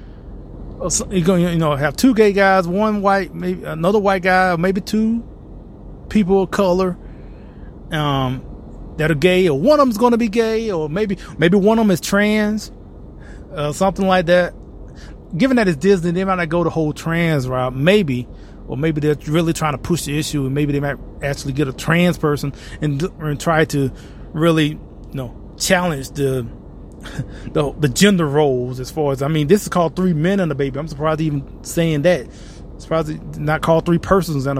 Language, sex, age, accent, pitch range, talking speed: English, male, 30-49, American, 140-185 Hz, 200 wpm